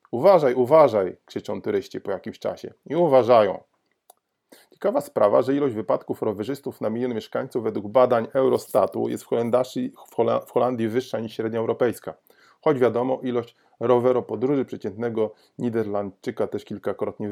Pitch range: 110-130 Hz